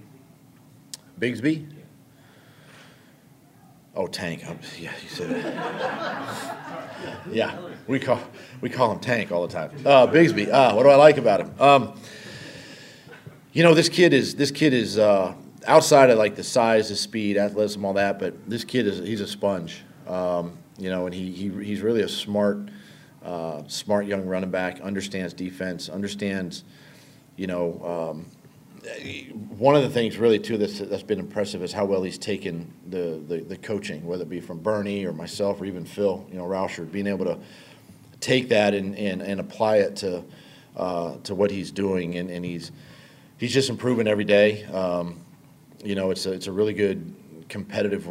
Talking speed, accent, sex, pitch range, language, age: 175 wpm, American, male, 95-125 Hz, English, 40-59